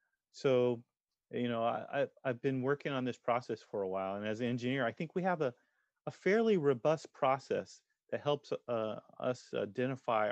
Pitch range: 110-130 Hz